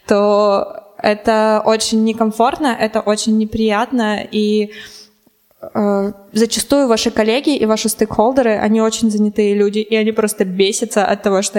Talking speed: 140 wpm